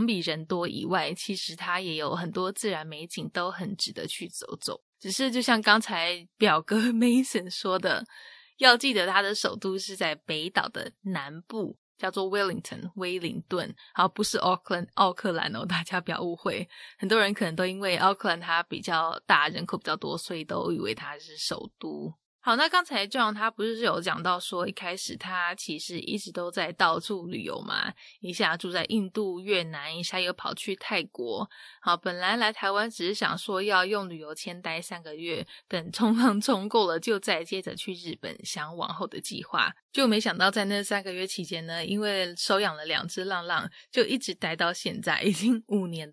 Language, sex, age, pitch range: English, female, 20-39, 175-215 Hz